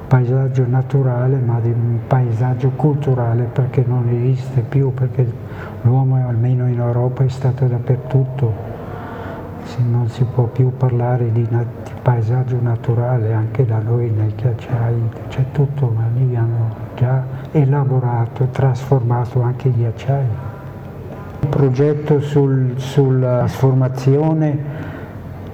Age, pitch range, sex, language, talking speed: 60-79, 120-135 Hz, male, Italian, 120 wpm